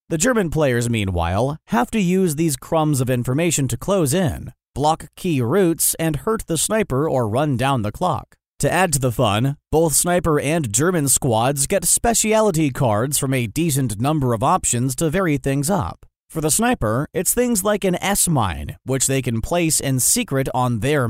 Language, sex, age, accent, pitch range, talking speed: English, male, 30-49, American, 130-180 Hz, 185 wpm